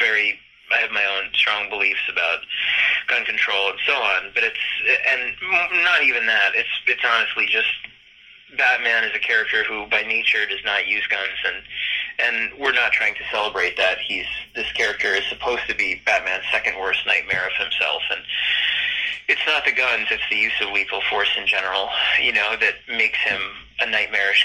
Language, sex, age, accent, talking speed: English, male, 30-49, American, 185 wpm